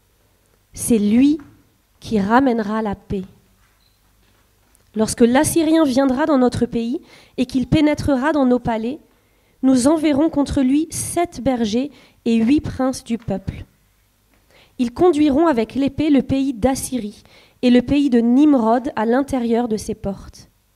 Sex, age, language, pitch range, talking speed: female, 30-49, French, 200-270 Hz, 140 wpm